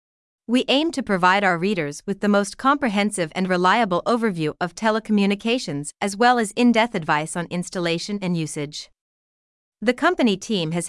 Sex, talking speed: female, 155 wpm